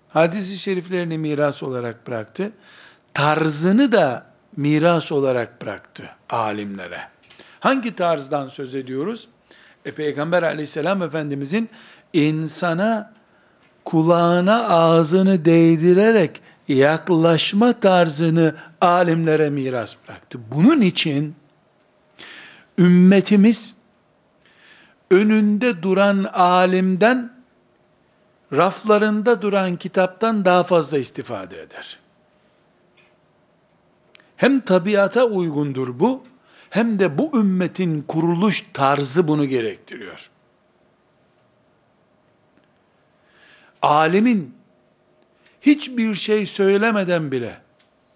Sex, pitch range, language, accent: male, 155-210 Hz, Turkish, native